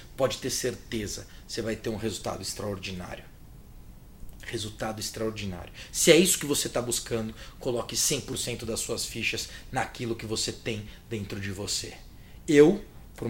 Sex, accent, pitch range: male, Brazilian, 110-185 Hz